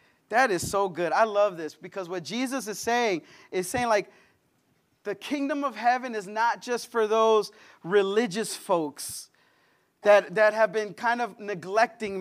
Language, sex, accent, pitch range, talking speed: English, male, American, 210-275 Hz, 160 wpm